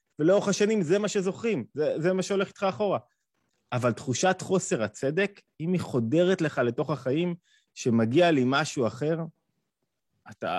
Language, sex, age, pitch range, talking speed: Hebrew, male, 30-49, 125-175 Hz, 145 wpm